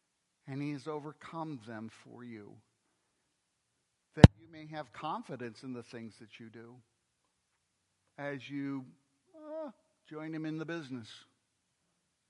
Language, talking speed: English, 125 wpm